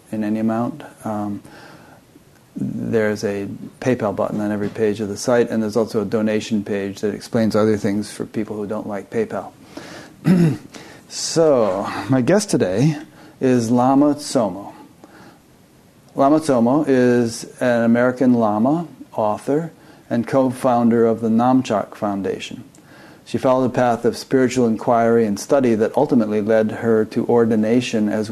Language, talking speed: English, 140 wpm